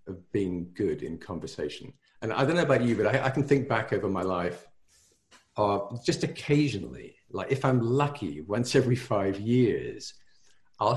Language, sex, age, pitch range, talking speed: English, male, 50-69, 100-135 Hz, 170 wpm